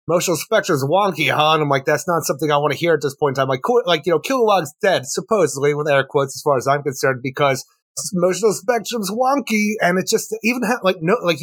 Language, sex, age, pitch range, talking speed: English, male, 30-49, 150-200 Hz, 245 wpm